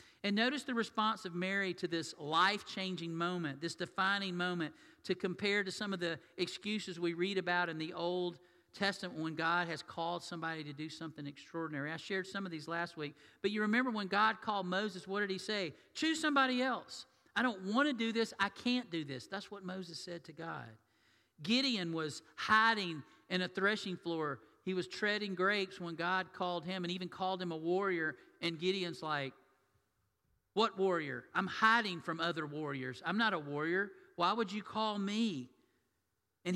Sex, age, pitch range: male, 50-69, 165-205 Hz